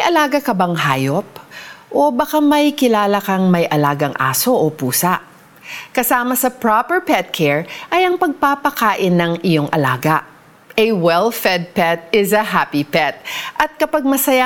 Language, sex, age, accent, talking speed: Filipino, female, 40-59, native, 150 wpm